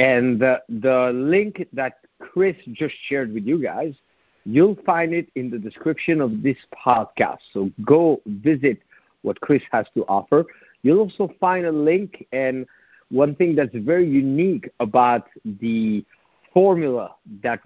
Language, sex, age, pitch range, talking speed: English, male, 50-69, 115-170 Hz, 145 wpm